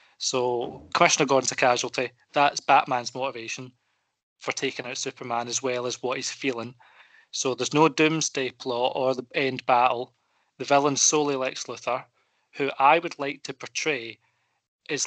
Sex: male